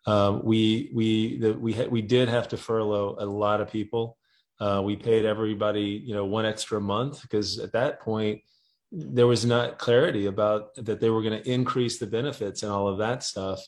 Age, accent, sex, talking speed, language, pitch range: 30-49, American, male, 200 wpm, English, 105-120 Hz